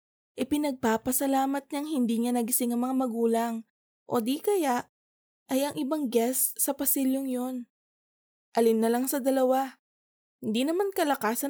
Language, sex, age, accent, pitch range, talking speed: Filipino, female, 20-39, native, 230-275 Hz, 140 wpm